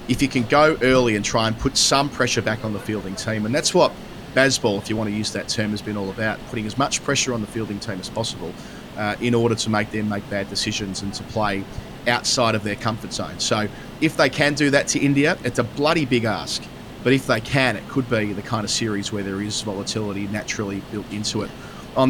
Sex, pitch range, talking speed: male, 105-125 Hz, 245 wpm